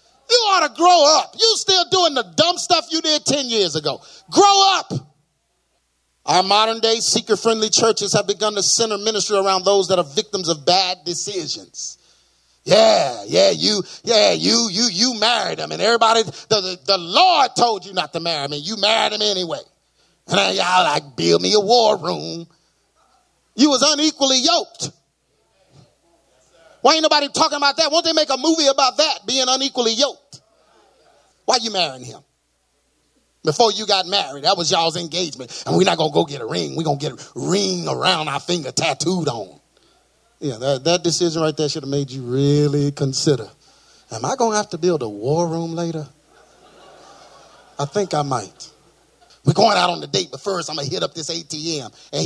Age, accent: 30-49, American